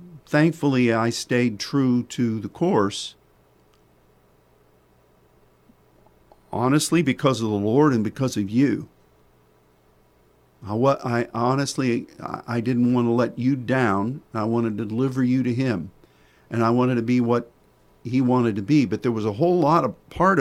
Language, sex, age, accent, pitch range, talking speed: English, male, 50-69, American, 110-140 Hz, 155 wpm